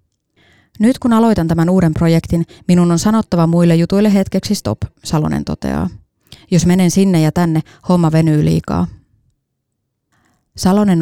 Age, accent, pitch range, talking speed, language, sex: 20-39, native, 160-180 Hz, 130 wpm, Finnish, female